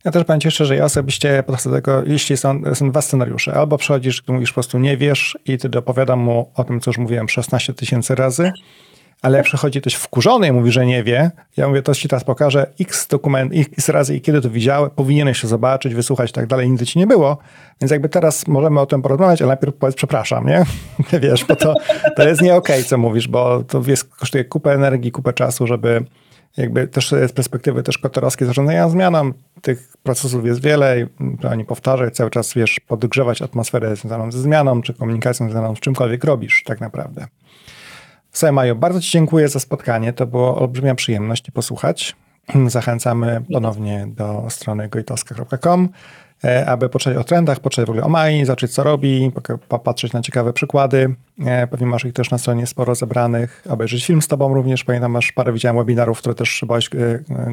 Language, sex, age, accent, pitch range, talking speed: Polish, male, 40-59, native, 120-145 Hz, 195 wpm